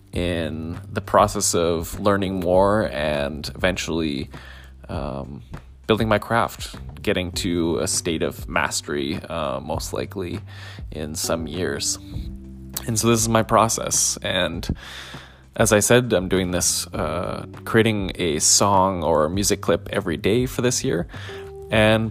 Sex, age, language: male, 20-39, English